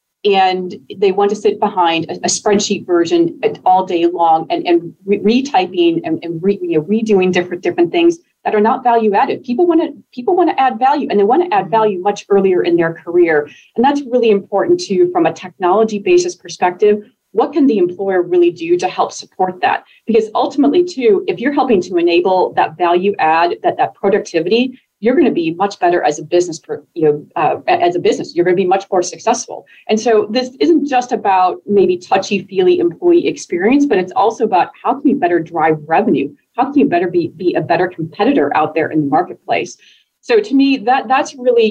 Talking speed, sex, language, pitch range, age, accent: 205 wpm, female, English, 175-285 Hz, 30-49, American